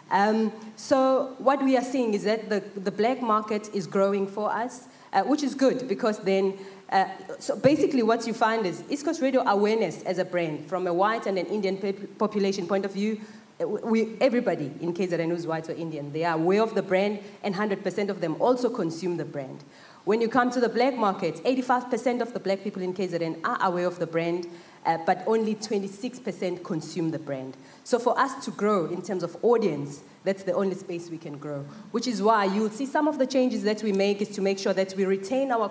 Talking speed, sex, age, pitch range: 215 wpm, female, 20-39, 175-225 Hz